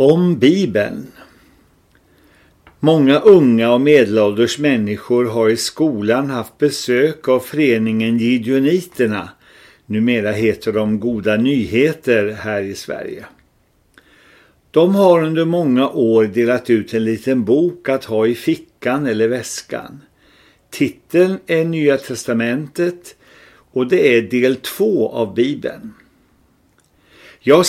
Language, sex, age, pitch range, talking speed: Swedish, male, 50-69, 115-150 Hz, 110 wpm